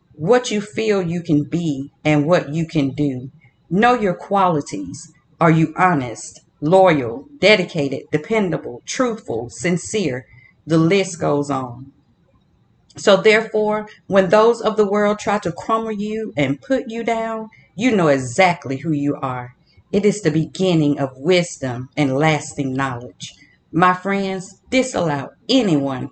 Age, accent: 40-59, American